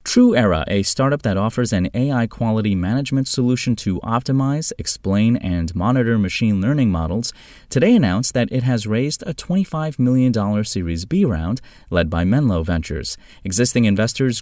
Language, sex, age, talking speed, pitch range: English, male, 30-49, 150 wpm, 90-125 Hz